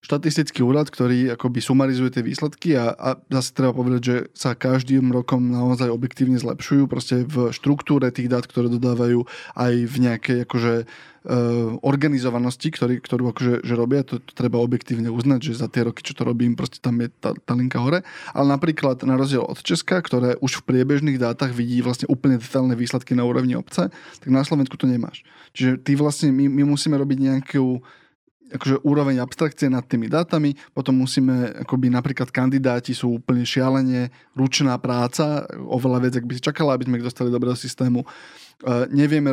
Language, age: Slovak, 20-39